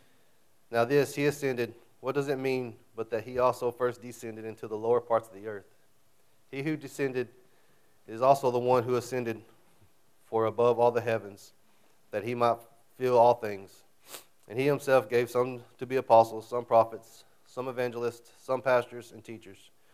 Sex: male